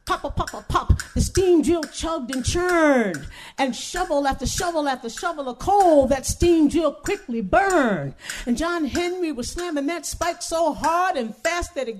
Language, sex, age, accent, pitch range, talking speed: English, female, 50-69, American, 265-350 Hz, 185 wpm